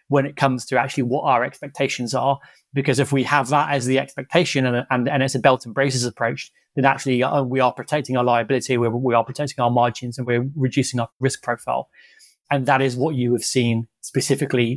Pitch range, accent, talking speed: 125-140 Hz, British, 210 wpm